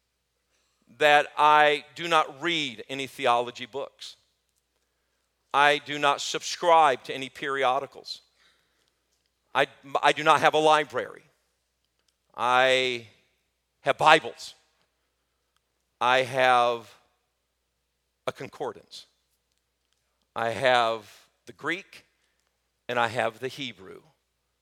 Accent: American